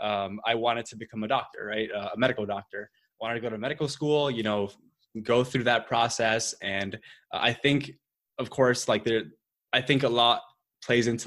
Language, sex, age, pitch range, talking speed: English, male, 20-39, 110-130 Hz, 200 wpm